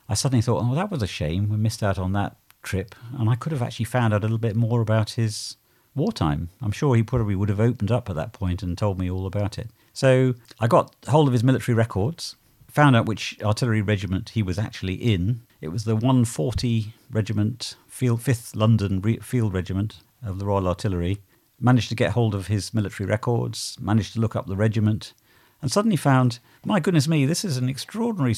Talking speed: 210 wpm